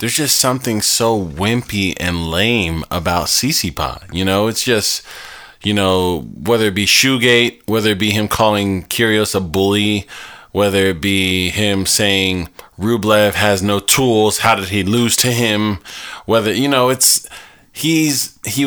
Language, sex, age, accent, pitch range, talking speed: English, male, 20-39, American, 95-115 Hz, 155 wpm